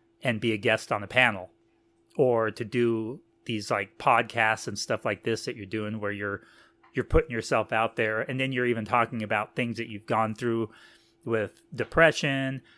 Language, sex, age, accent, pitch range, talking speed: English, male, 30-49, American, 105-125 Hz, 190 wpm